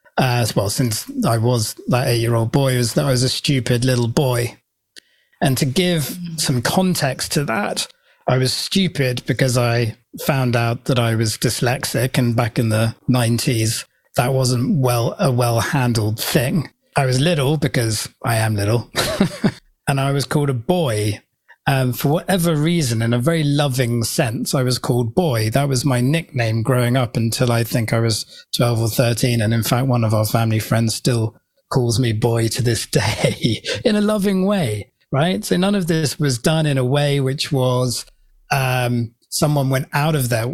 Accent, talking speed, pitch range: British, 180 wpm, 120-145 Hz